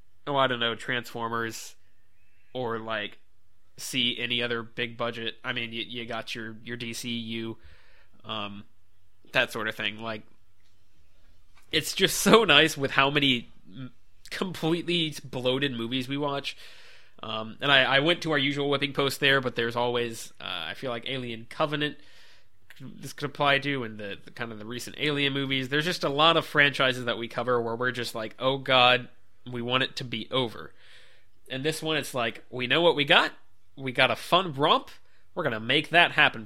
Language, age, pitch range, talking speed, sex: English, 20-39, 110-145 Hz, 190 wpm, male